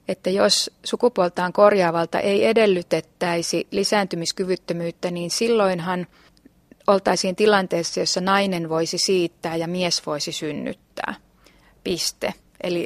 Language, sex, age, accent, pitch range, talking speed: Finnish, female, 30-49, native, 175-205 Hz, 95 wpm